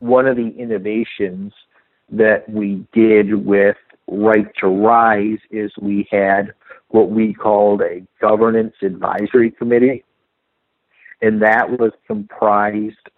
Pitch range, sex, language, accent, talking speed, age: 100-115 Hz, male, English, American, 115 wpm, 50-69